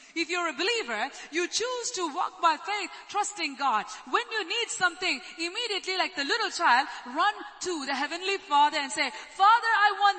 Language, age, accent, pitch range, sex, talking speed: English, 30-49, Indian, 305-400 Hz, female, 185 wpm